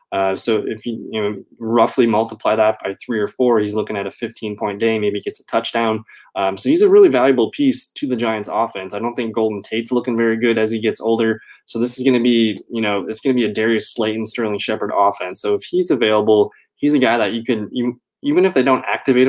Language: English